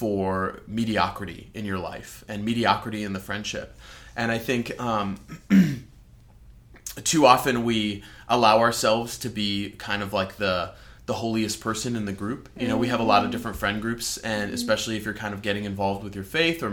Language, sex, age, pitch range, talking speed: English, male, 20-39, 100-120 Hz, 190 wpm